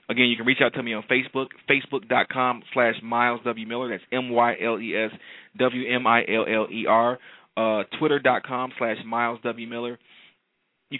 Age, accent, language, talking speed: 30-49, American, English, 185 wpm